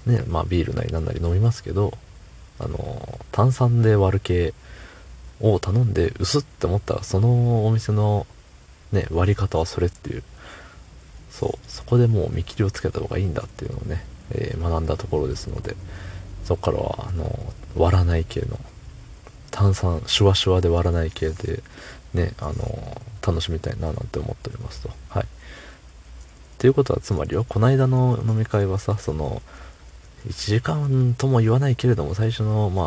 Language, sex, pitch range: Japanese, male, 85-115 Hz